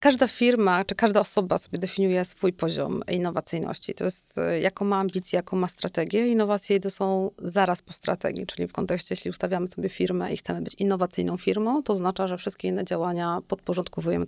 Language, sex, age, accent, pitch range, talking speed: Polish, female, 30-49, native, 180-205 Hz, 180 wpm